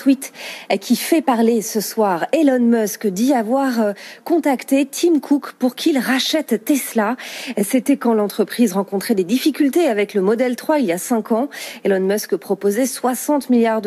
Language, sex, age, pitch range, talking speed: French, female, 40-59, 200-260 Hz, 155 wpm